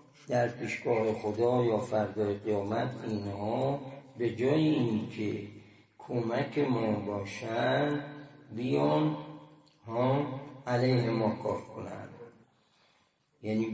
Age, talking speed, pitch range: 60-79, 85 wpm, 105-130 Hz